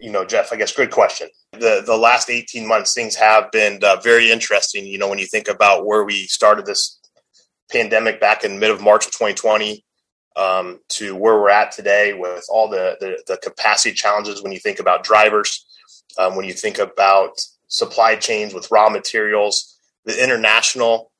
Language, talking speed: English, 190 wpm